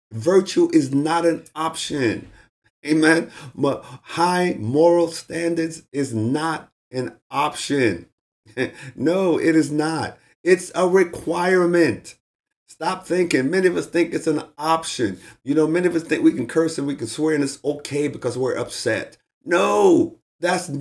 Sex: male